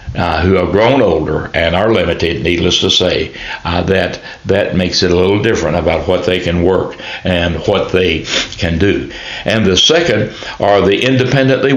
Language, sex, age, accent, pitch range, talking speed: English, male, 60-79, American, 90-105 Hz, 180 wpm